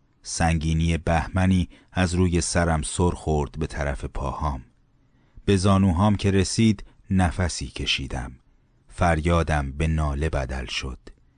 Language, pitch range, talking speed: Persian, 75-105 Hz, 110 wpm